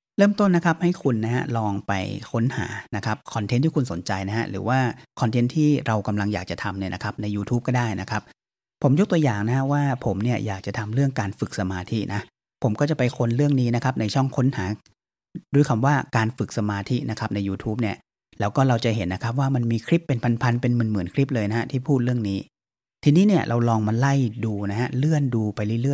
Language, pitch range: Thai, 105-135 Hz